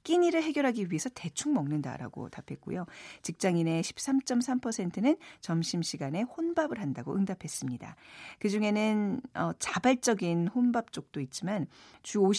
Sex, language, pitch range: female, Korean, 155-245 Hz